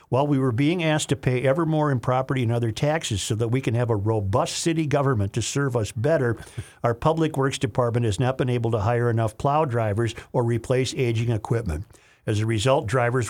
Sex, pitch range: male, 115-135 Hz